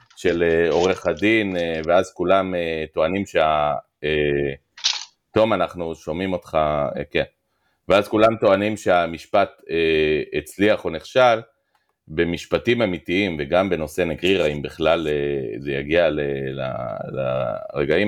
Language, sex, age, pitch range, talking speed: Hebrew, male, 40-59, 80-110 Hz, 100 wpm